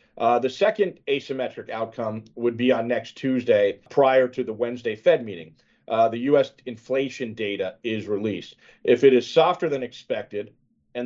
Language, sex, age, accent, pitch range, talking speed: English, male, 40-59, American, 120-145 Hz, 165 wpm